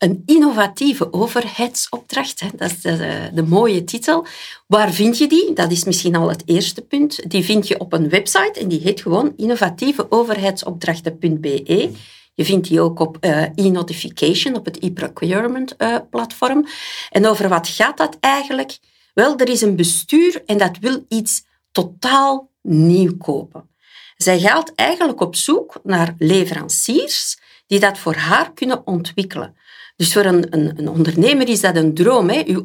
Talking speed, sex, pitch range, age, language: 155 wpm, female, 170-255 Hz, 50-69, Dutch